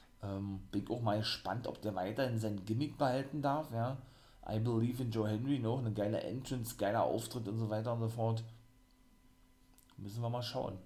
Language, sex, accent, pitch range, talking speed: German, male, German, 105-125 Hz, 195 wpm